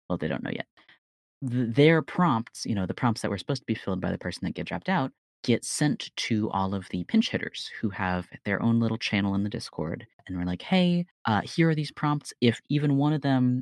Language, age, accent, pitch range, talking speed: English, 30-49, American, 100-145 Hz, 240 wpm